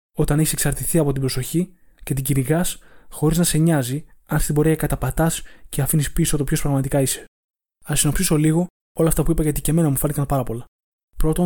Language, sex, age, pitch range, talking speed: Greek, male, 20-39, 140-160 Hz, 195 wpm